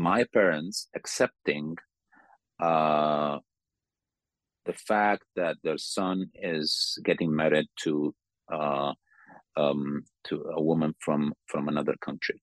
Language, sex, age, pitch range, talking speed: Slovak, male, 40-59, 75-90 Hz, 105 wpm